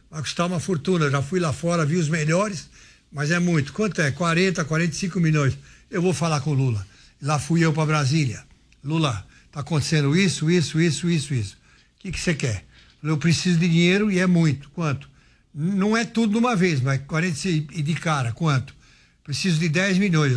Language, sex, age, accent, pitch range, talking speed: English, male, 60-79, Brazilian, 150-175 Hz, 200 wpm